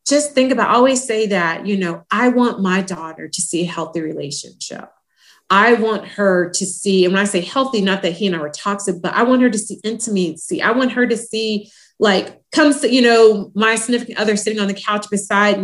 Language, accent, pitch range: English, American, 185-250 Hz